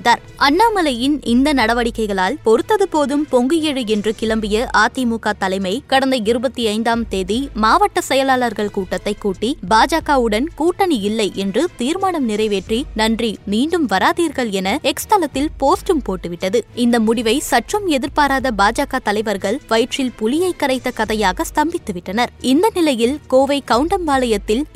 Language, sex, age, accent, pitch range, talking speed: Tamil, female, 20-39, native, 220-285 Hz, 105 wpm